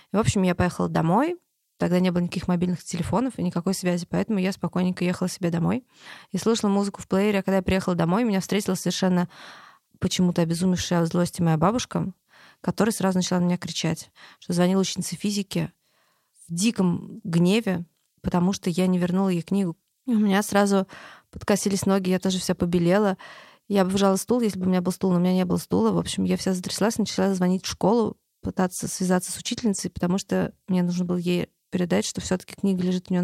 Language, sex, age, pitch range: Russian, female, 20-39, 180-195 Hz